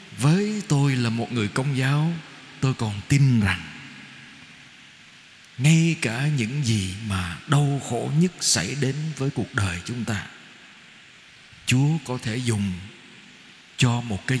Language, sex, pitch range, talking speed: Vietnamese, male, 110-155 Hz, 140 wpm